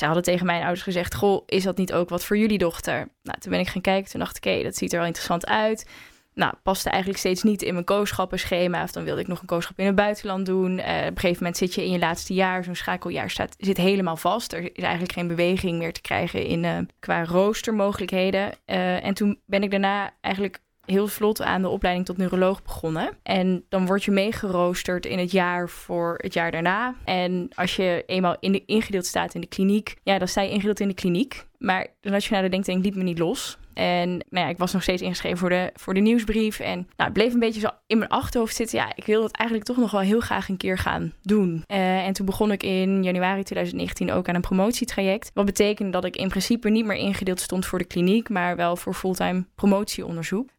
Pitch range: 180-205 Hz